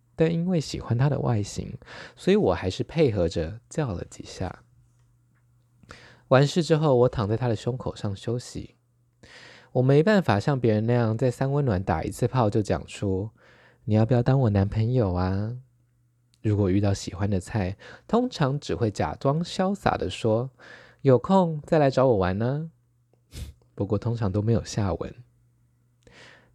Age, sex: 20-39, male